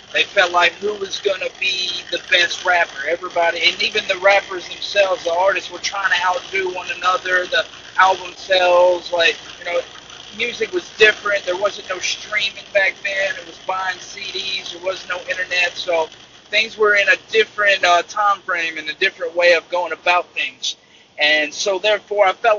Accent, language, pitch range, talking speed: American, English, 170-195 Hz, 185 wpm